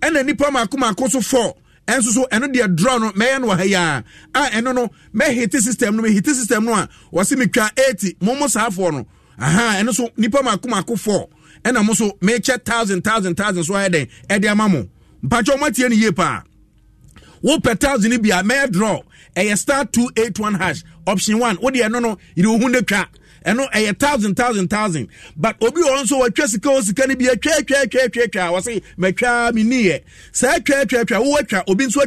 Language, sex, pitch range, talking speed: English, male, 190-250 Hz, 205 wpm